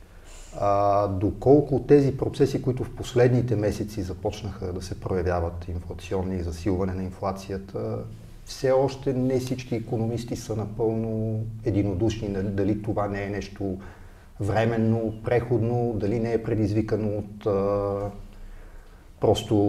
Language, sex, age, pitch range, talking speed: Bulgarian, male, 40-59, 95-110 Hz, 115 wpm